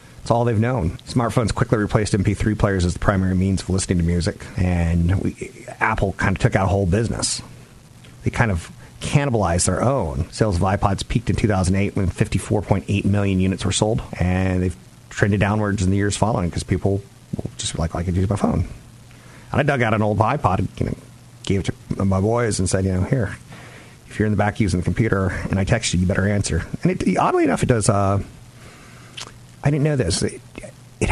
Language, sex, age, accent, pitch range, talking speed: English, male, 40-59, American, 95-125 Hz, 215 wpm